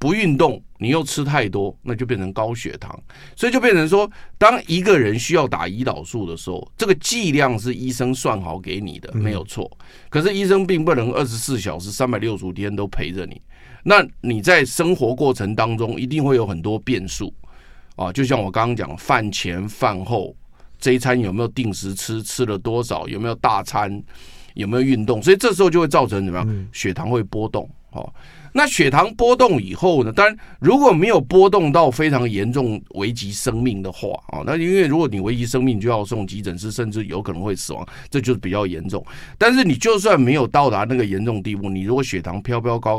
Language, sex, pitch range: Chinese, male, 95-135 Hz